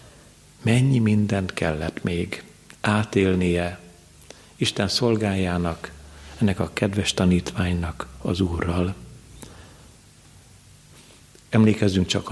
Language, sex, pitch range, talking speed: Hungarian, male, 90-110 Hz, 75 wpm